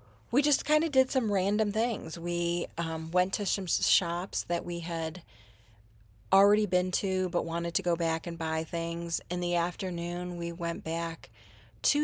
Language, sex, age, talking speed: English, female, 30-49, 175 wpm